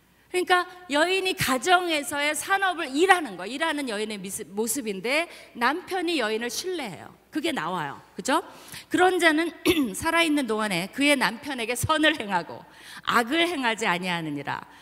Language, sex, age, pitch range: Korean, female, 40-59, 210-310 Hz